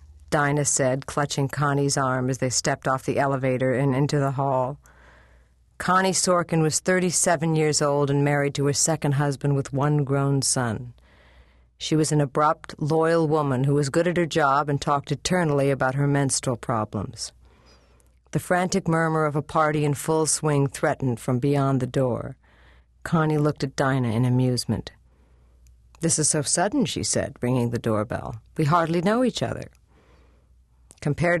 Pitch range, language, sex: 125-155 Hz, English, female